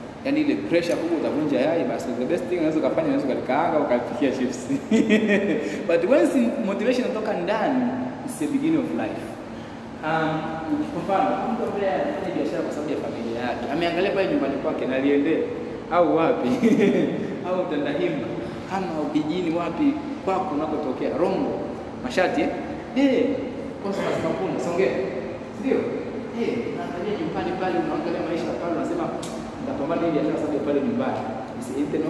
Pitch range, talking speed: 160-270 Hz, 95 wpm